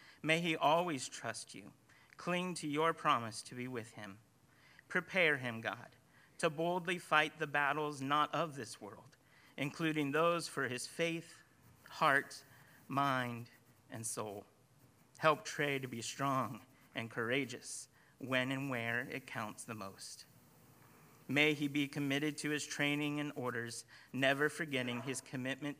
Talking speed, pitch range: 140 wpm, 120-145 Hz